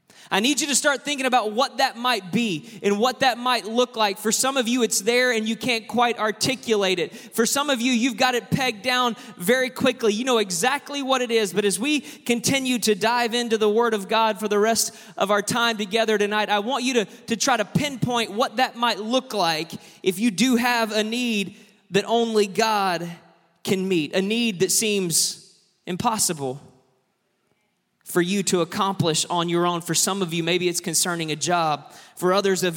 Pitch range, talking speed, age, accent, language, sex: 195-235 Hz, 205 wpm, 20-39, American, English, male